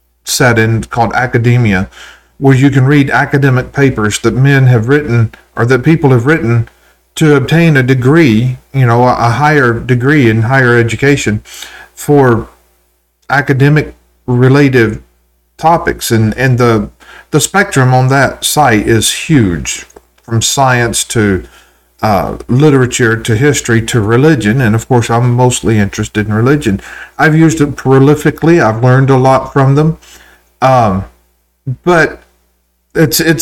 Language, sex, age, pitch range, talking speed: English, male, 40-59, 110-140 Hz, 135 wpm